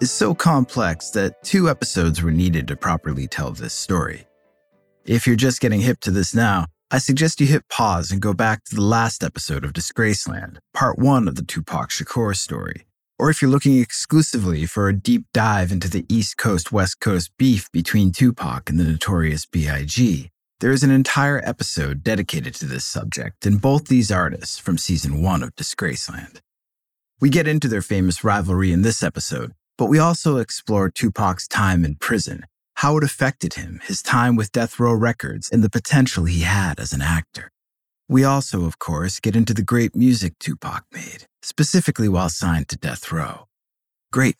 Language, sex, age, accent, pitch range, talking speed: English, male, 30-49, American, 90-130 Hz, 180 wpm